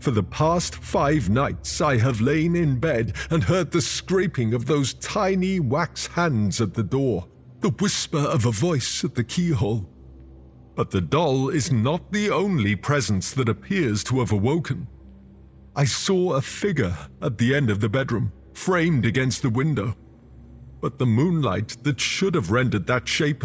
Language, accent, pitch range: English, British, 110-170 Hz